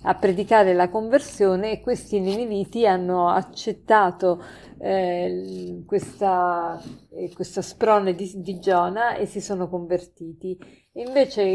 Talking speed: 110 wpm